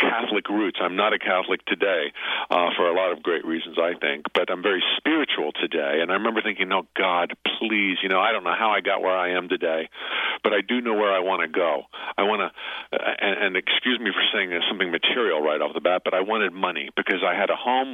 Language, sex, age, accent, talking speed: English, male, 50-69, American, 245 wpm